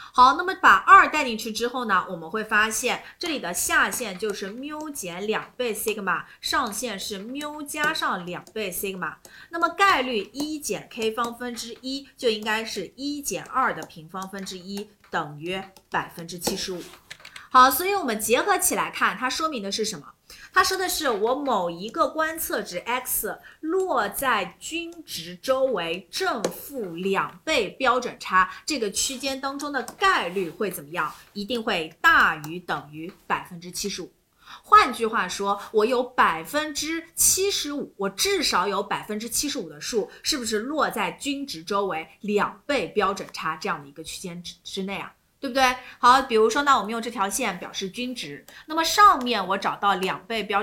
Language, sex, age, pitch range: Chinese, female, 30-49, 185-280 Hz